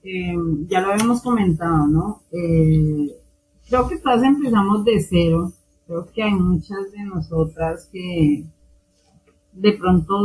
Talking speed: 130 wpm